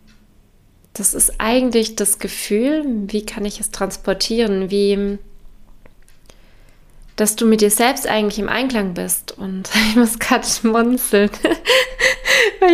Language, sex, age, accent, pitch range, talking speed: German, female, 20-39, German, 205-245 Hz, 120 wpm